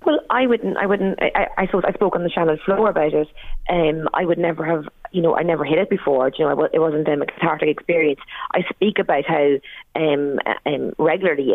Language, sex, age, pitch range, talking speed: English, female, 30-49, 160-200 Hz, 225 wpm